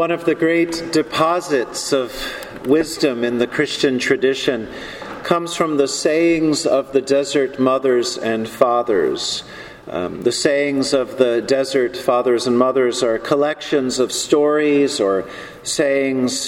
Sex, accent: male, American